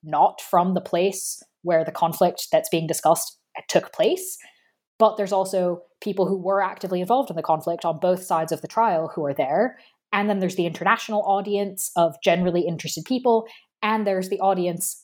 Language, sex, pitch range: English, female, 170-215 Hz